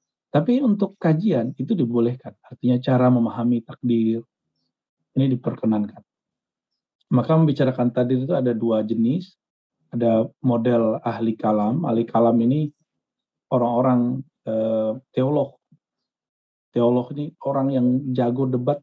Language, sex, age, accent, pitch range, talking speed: Indonesian, male, 50-69, native, 120-150 Hz, 105 wpm